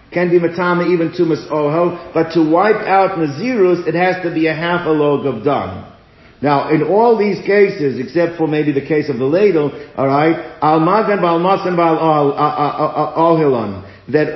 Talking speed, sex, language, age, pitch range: 180 wpm, male, English, 50-69, 150-180 Hz